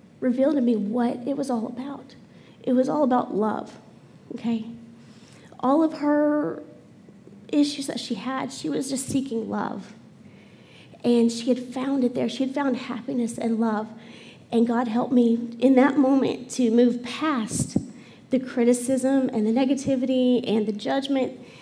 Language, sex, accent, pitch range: English, female, American, 225-255 Hz